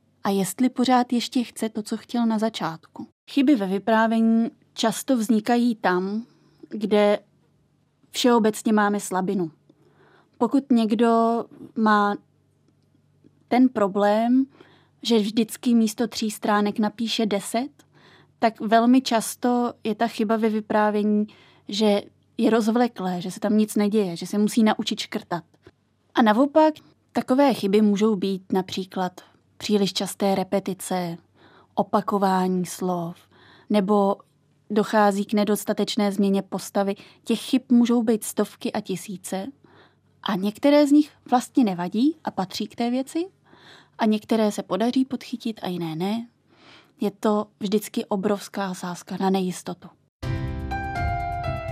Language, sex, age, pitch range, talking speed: Czech, female, 20-39, 195-235 Hz, 120 wpm